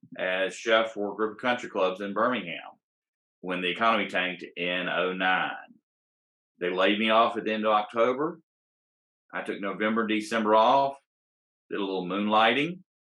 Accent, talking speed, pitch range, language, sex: American, 155 wpm, 95-110 Hz, English, male